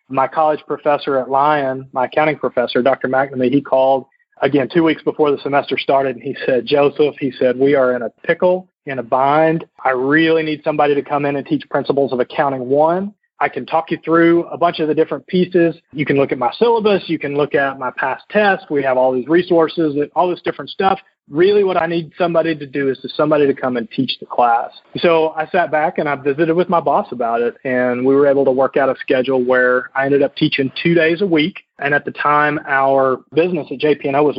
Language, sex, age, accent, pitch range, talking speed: English, male, 30-49, American, 135-165 Hz, 235 wpm